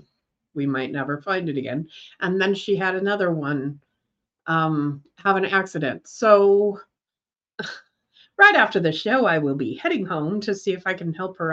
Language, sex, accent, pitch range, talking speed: English, female, American, 170-260 Hz, 170 wpm